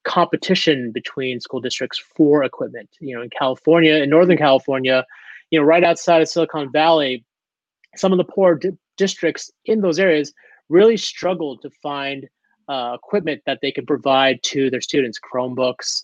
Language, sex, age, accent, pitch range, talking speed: English, male, 30-49, American, 130-175 Hz, 155 wpm